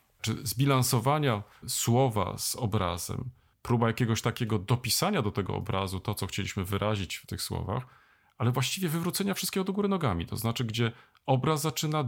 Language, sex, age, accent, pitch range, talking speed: Polish, male, 40-59, native, 110-140 Hz, 155 wpm